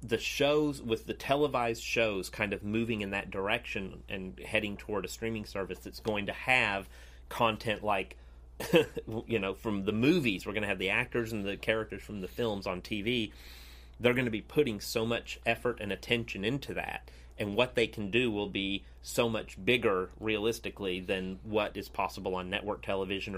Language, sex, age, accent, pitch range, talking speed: English, male, 30-49, American, 90-110 Hz, 185 wpm